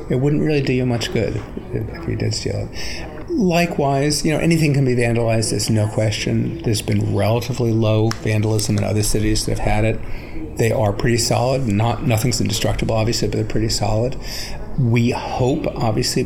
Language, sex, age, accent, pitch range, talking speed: English, male, 40-59, American, 105-120 Hz, 180 wpm